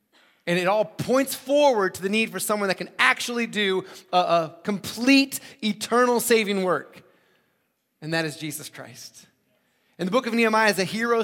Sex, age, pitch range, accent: male, 30-49, 180-225 Hz, American